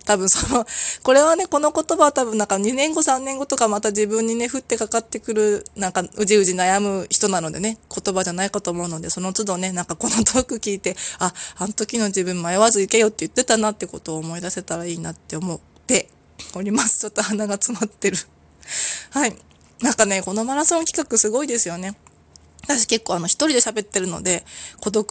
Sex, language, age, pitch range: female, Japanese, 20-39, 180-225 Hz